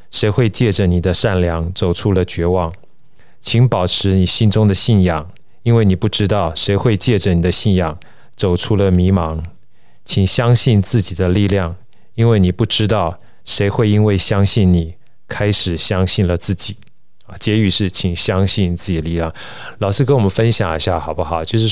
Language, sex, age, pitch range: Chinese, male, 20-39, 90-110 Hz